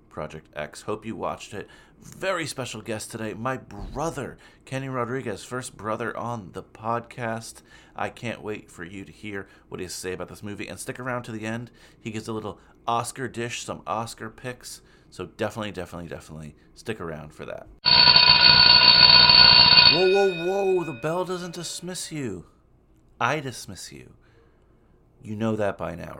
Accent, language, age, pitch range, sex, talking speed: American, English, 40-59, 90-125 Hz, male, 165 wpm